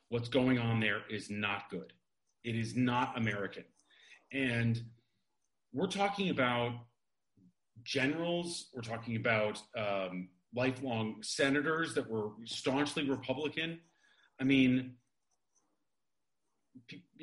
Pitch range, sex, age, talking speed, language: 115-155 Hz, male, 40-59, 100 wpm, English